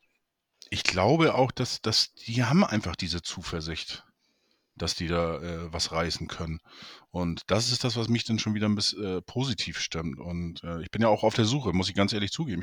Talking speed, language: 215 wpm, German